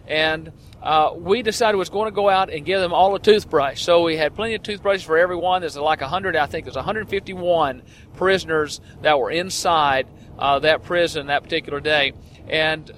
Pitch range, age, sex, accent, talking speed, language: 150-190 Hz, 40-59, male, American, 195 wpm, English